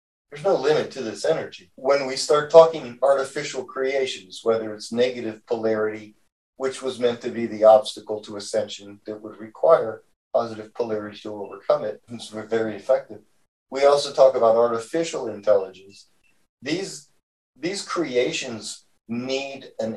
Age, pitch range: 40-59, 105-135 Hz